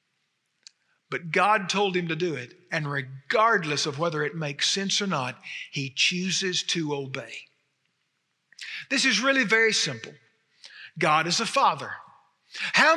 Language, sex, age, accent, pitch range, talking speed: English, male, 50-69, American, 150-215 Hz, 140 wpm